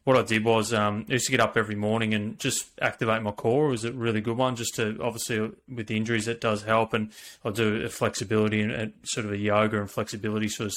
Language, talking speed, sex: English, 255 wpm, male